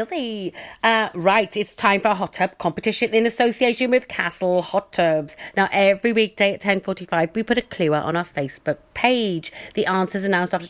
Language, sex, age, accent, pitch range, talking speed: English, female, 40-59, British, 180-235 Hz, 190 wpm